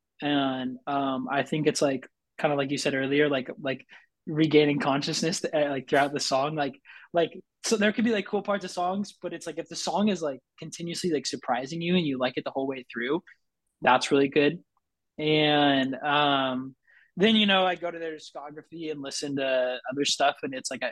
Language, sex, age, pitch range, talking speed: English, male, 20-39, 130-155 Hz, 205 wpm